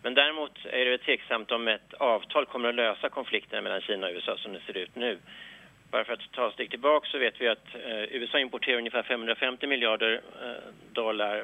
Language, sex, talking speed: English, male, 200 wpm